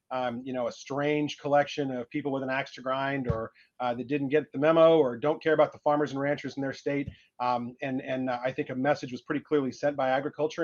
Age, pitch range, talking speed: 30-49, 130-160 Hz, 255 wpm